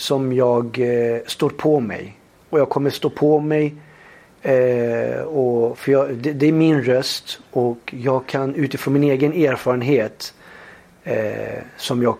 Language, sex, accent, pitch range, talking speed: Swedish, male, native, 120-145 Hz, 150 wpm